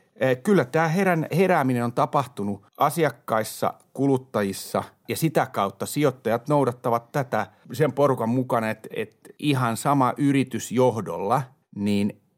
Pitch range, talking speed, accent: 105-140 Hz, 115 wpm, native